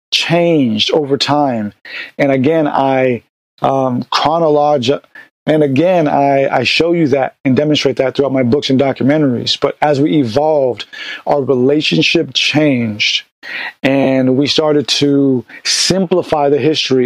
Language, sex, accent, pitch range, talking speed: English, male, American, 130-155 Hz, 130 wpm